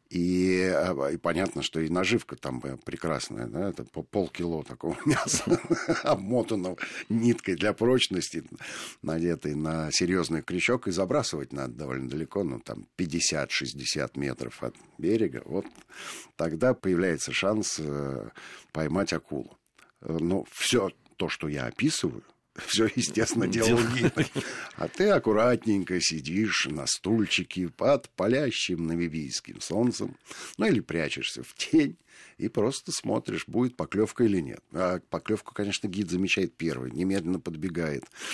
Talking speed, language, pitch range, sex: 125 wpm, Russian, 80-120 Hz, male